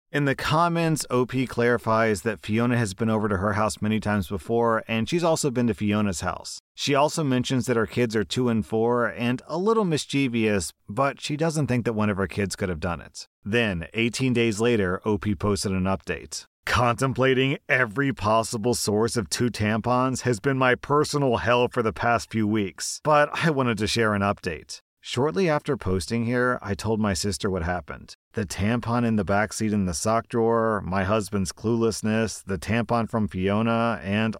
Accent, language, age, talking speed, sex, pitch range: American, English, 40-59, 190 wpm, male, 100-125 Hz